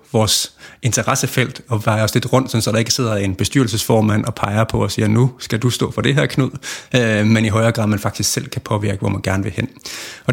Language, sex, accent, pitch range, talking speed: Danish, male, native, 105-125 Hz, 240 wpm